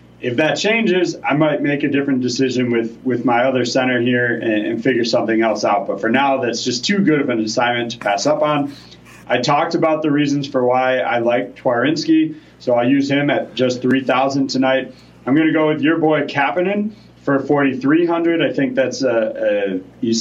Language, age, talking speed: English, 30-49, 215 wpm